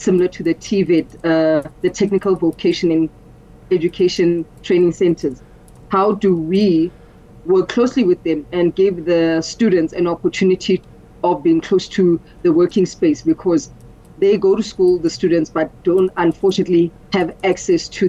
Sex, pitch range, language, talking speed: female, 170-200 Hz, English, 150 wpm